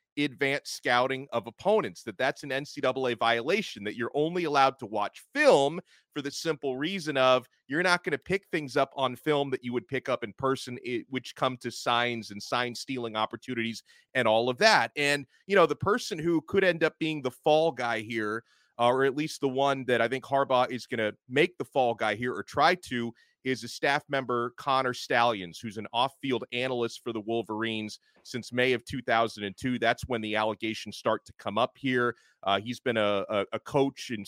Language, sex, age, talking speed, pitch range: English, male, 30-49, 200 wpm, 110-140 Hz